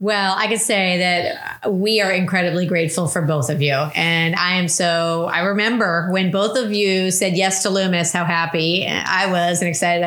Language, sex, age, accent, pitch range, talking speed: English, female, 30-49, American, 175-210 Hz, 195 wpm